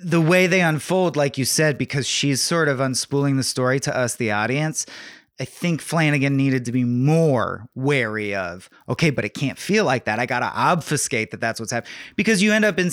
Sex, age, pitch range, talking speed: male, 30-49, 130-185 Hz, 220 wpm